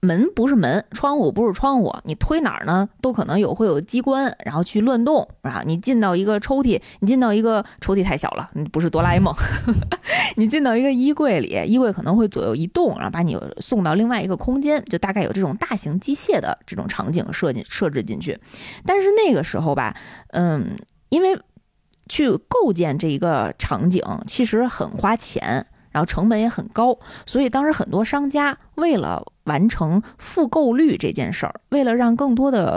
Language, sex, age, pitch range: Chinese, female, 20-39, 185-260 Hz